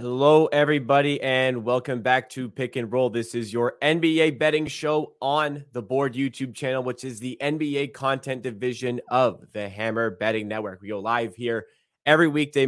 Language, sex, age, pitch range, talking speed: English, male, 20-39, 110-135 Hz, 175 wpm